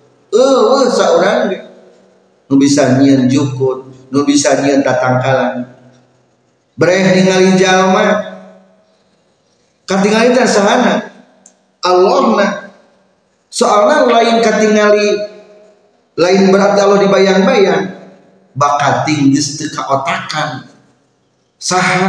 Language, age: Indonesian, 40-59